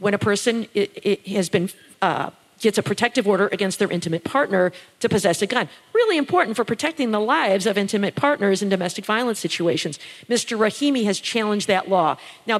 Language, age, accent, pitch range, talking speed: English, 50-69, American, 195-235 Hz, 170 wpm